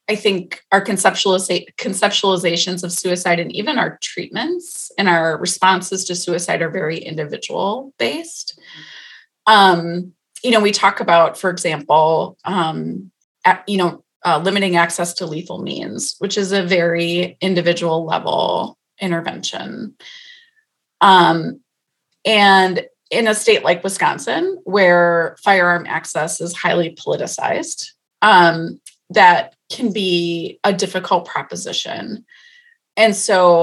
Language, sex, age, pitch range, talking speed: English, female, 30-49, 170-210 Hz, 115 wpm